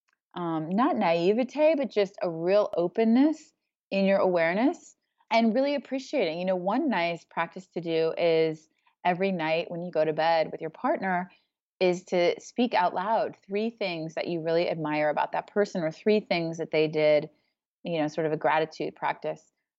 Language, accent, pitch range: English, American, 155-195 Hz